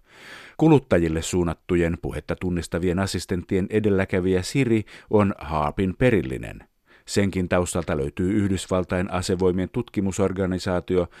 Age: 50-69